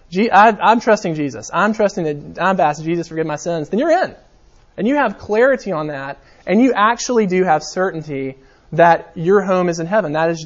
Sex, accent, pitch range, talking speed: male, American, 150-195 Hz, 205 wpm